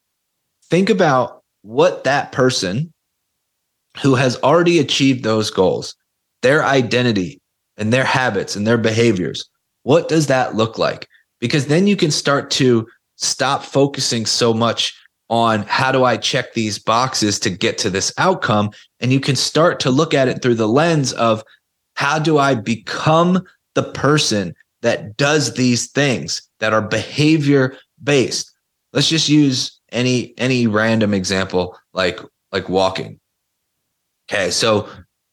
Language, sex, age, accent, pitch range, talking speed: English, male, 30-49, American, 110-140 Hz, 140 wpm